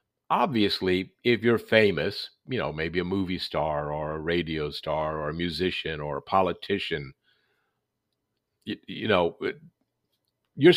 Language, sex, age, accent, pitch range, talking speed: English, male, 50-69, American, 95-125 Hz, 135 wpm